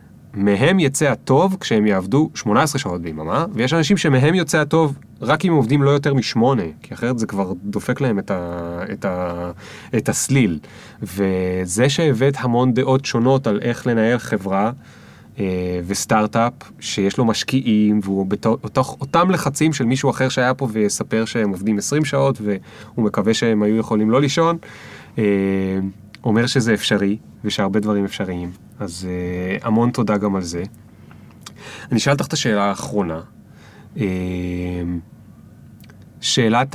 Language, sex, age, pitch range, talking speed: Hebrew, male, 20-39, 100-130 Hz, 145 wpm